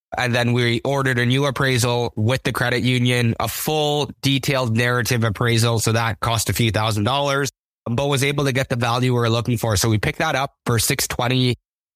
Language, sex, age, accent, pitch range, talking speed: English, male, 20-39, American, 110-130 Hz, 205 wpm